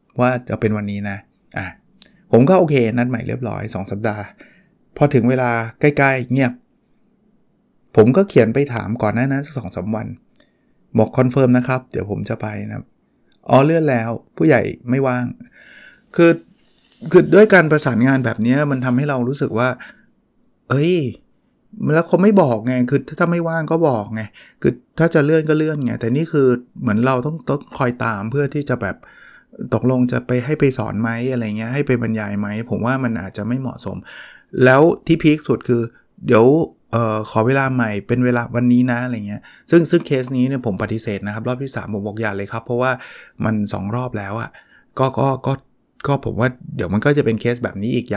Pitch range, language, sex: 110-140 Hz, Thai, male